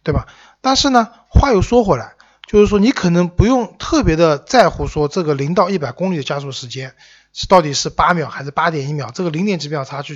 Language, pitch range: Chinese, 140-185 Hz